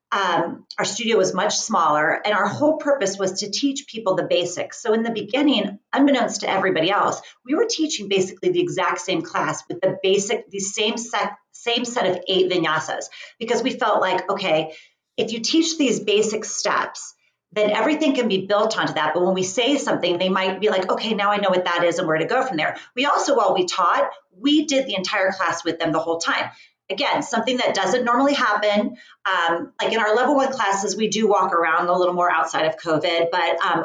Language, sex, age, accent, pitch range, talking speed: English, female, 40-59, American, 185-245 Hz, 220 wpm